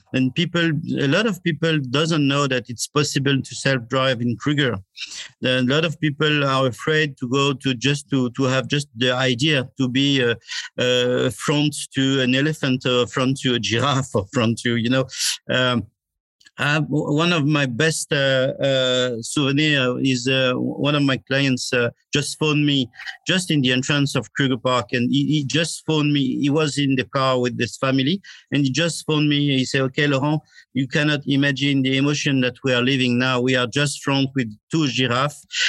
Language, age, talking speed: English, 50-69, 195 wpm